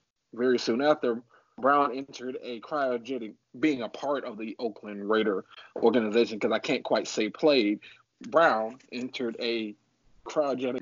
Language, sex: English, male